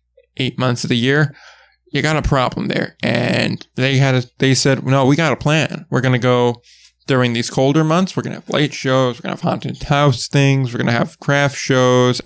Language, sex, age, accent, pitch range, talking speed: English, male, 20-39, American, 130-150 Hz, 230 wpm